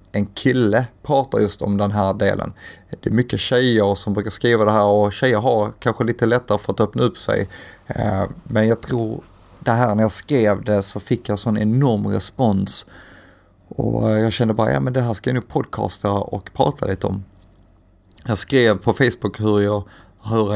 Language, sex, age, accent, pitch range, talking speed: English, male, 30-49, Swedish, 100-120 Hz, 195 wpm